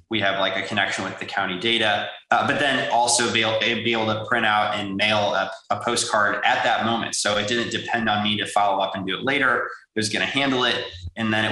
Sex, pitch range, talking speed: male, 105-115 Hz, 265 wpm